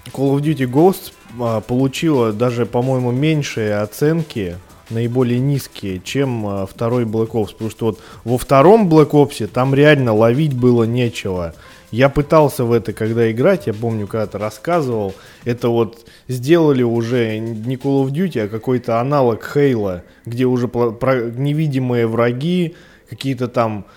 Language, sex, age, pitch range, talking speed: Russian, male, 20-39, 110-140 Hz, 140 wpm